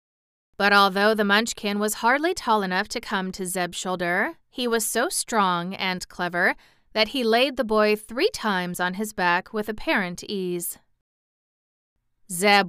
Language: English